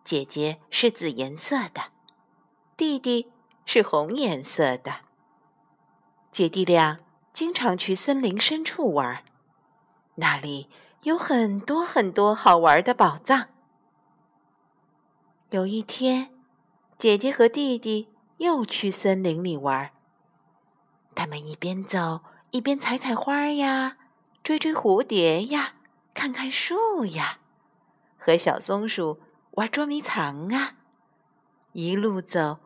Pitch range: 175-265 Hz